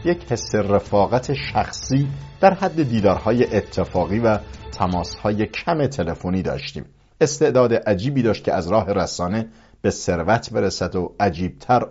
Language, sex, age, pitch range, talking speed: English, male, 50-69, 95-125 Hz, 125 wpm